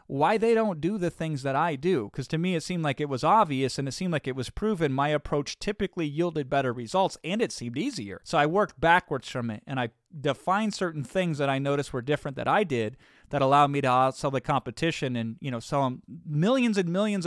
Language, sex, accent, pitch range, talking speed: English, male, American, 125-150 Hz, 240 wpm